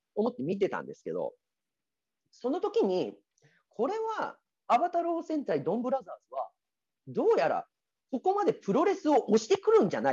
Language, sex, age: Japanese, male, 40-59